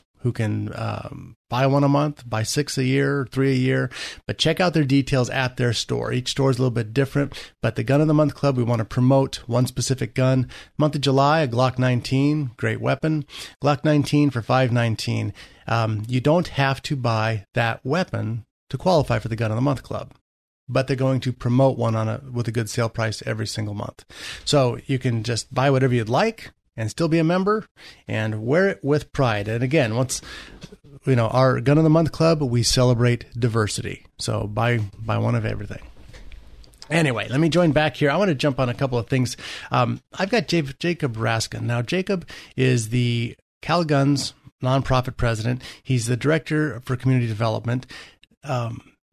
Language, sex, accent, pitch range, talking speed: English, male, American, 115-145 Hz, 200 wpm